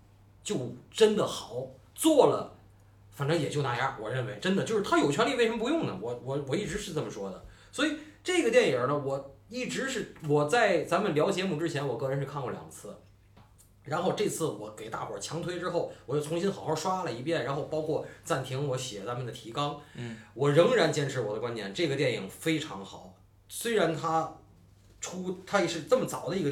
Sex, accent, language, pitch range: male, native, Chinese, 120-185 Hz